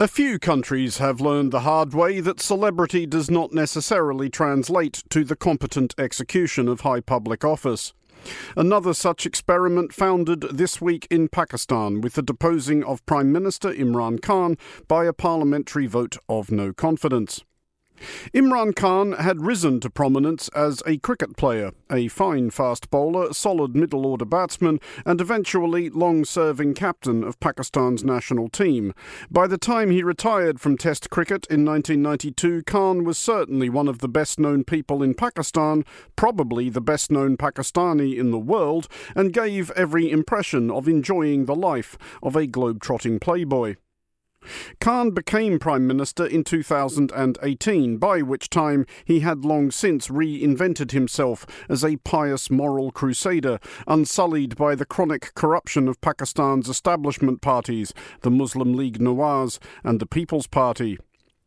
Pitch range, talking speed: 130-170 Hz, 145 wpm